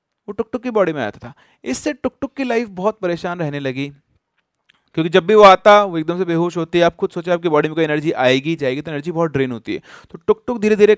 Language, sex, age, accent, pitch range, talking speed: Hindi, male, 30-49, native, 155-205 Hz, 270 wpm